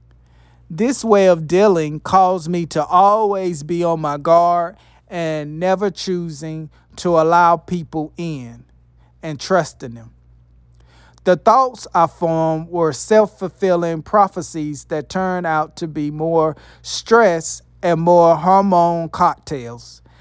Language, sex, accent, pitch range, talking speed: English, male, American, 145-185 Hz, 120 wpm